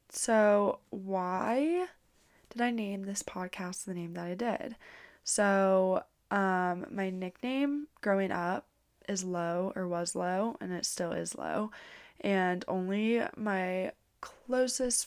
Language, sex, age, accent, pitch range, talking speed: English, female, 20-39, American, 185-220 Hz, 125 wpm